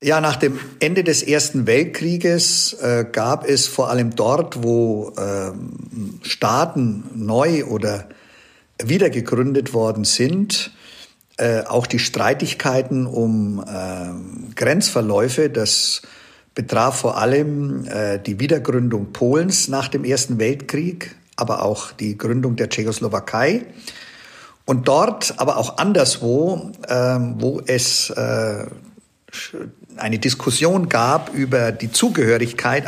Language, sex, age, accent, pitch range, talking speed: German, male, 50-69, German, 115-150 Hz, 110 wpm